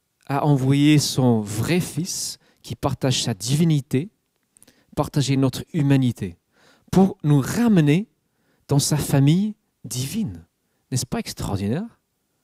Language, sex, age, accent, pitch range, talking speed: French, male, 40-59, French, 130-185 Hz, 105 wpm